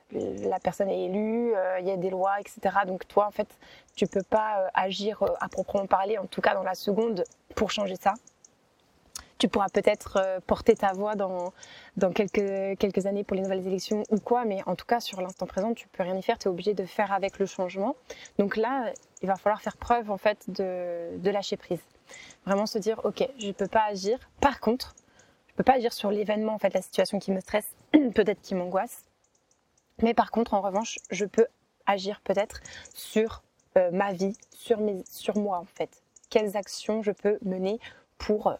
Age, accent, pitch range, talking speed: 20-39, French, 195-220 Hz, 215 wpm